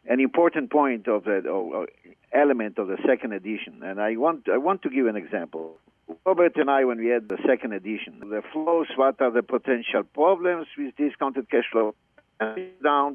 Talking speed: 190 wpm